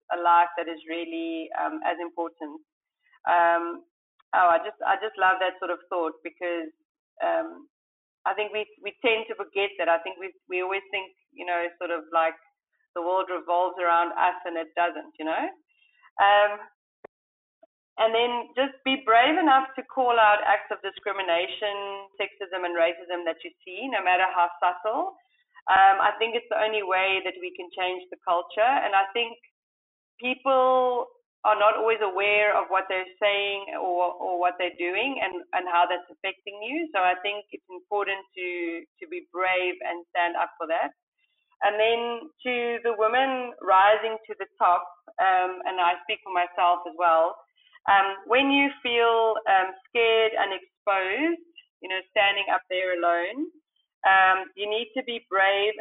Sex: female